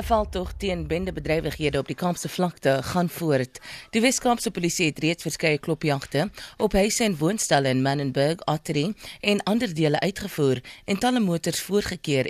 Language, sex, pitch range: English, female, 145-195 Hz